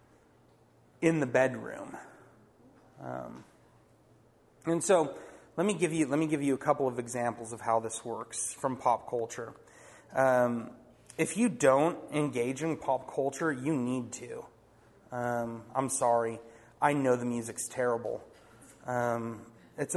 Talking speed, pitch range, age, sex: 140 wpm, 115-145 Hz, 30-49, male